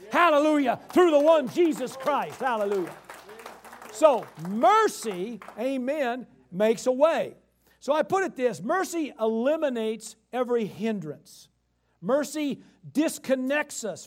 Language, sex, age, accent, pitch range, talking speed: English, male, 50-69, American, 220-340 Hz, 105 wpm